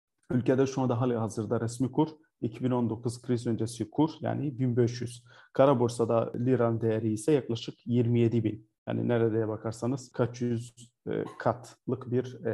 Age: 40-59